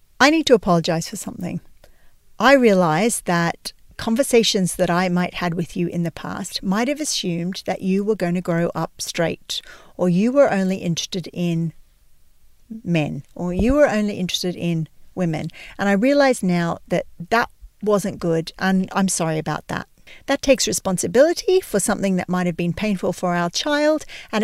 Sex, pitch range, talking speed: female, 180-240 Hz, 175 wpm